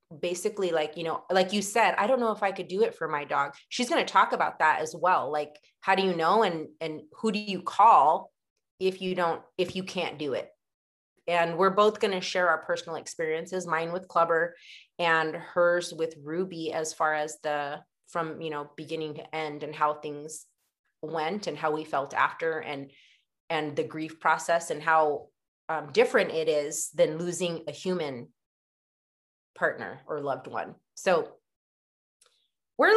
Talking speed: 185 wpm